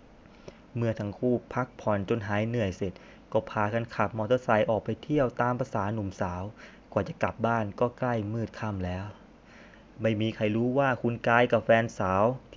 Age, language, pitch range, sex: 20-39, Thai, 100-120 Hz, male